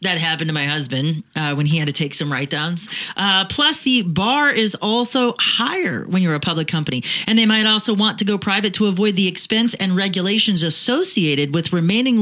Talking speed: 210 wpm